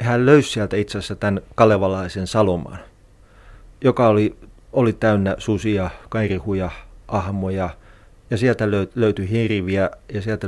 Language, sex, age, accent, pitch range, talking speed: Finnish, male, 30-49, native, 95-115 Hz, 130 wpm